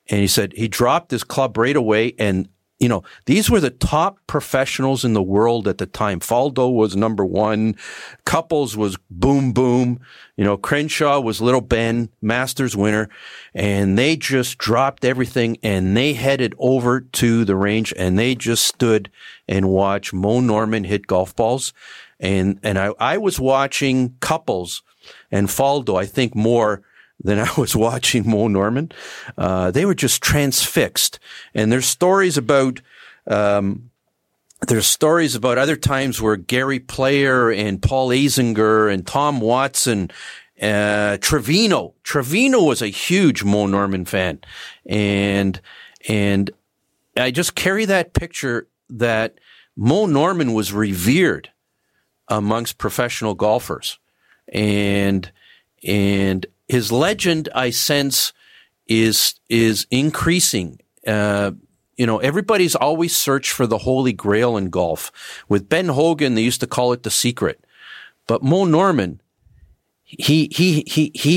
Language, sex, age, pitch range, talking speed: English, male, 50-69, 105-135 Hz, 140 wpm